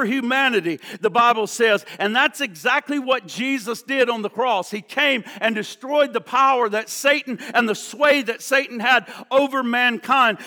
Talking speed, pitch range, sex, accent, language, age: 165 wpm, 195-260 Hz, male, American, English, 50-69